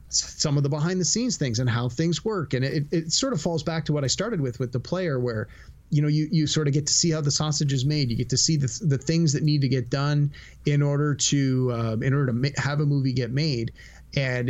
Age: 30-49